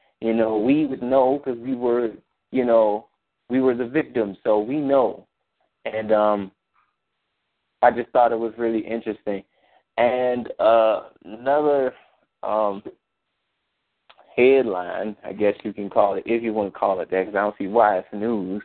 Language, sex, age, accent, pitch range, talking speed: English, male, 20-39, American, 110-130 Hz, 165 wpm